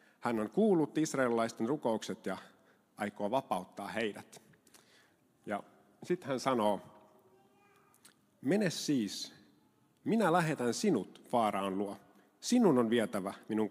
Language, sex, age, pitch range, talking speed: Finnish, male, 50-69, 105-130 Hz, 105 wpm